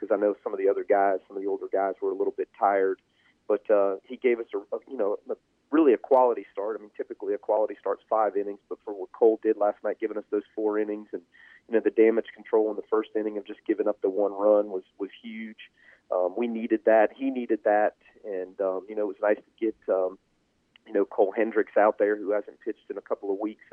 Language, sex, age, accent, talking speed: English, male, 40-59, American, 255 wpm